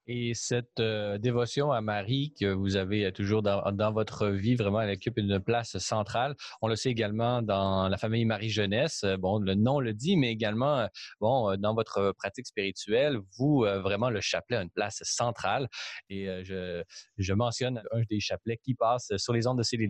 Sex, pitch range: male, 100-135 Hz